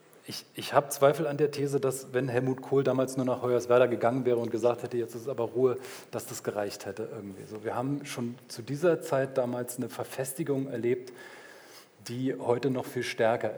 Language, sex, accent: German, male, German